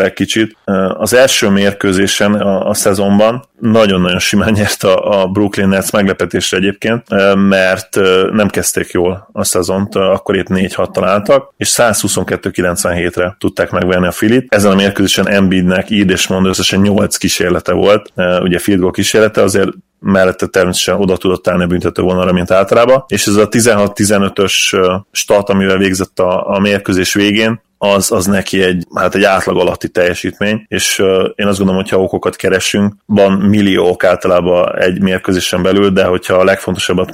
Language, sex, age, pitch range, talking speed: Hungarian, male, 20-39, 95-100 Hz, 155 wpm